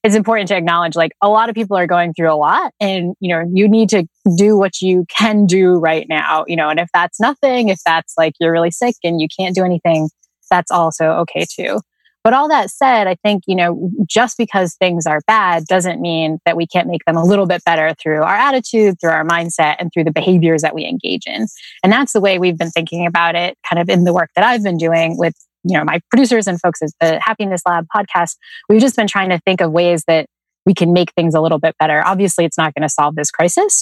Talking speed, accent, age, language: 250 wpm, American, 20-39, English